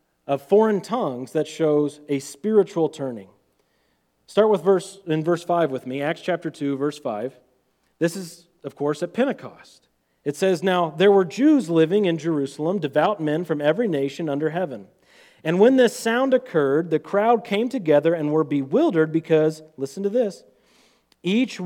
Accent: American